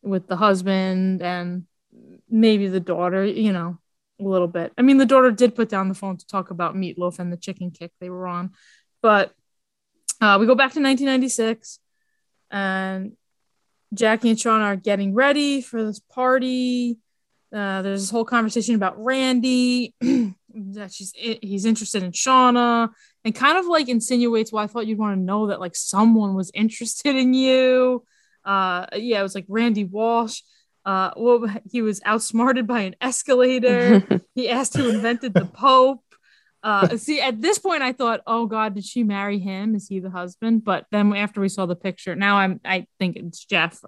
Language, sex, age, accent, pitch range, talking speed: English, female, 20-39, American, 190-245 Hz, 180 wpm